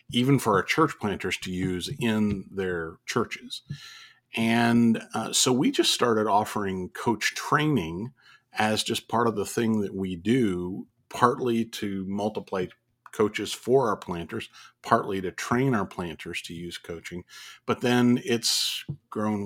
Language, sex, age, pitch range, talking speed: English, male, 40-59, 90-115 Hz, 145 wpm